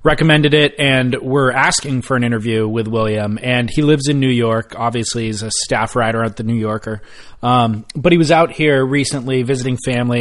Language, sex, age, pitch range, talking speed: English, male, 30-49, 115-140 Hz, 200 wpm